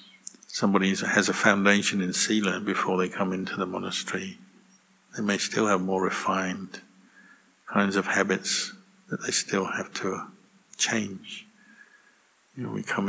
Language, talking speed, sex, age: English, 140 wpm, male, 60-79